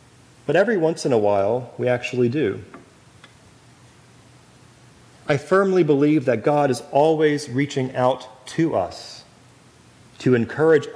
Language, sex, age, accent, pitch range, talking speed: English, male, 30-49, American, 120-145 Hz, 120 wpm